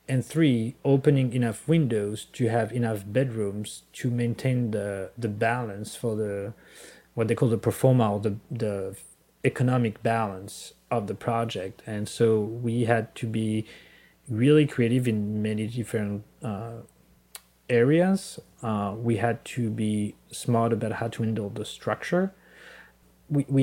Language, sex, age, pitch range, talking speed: French, male, 30-49, 105-125 Hz, 140 wpm